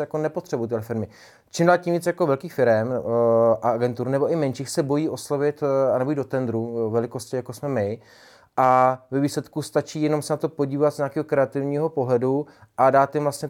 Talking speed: 185 wpm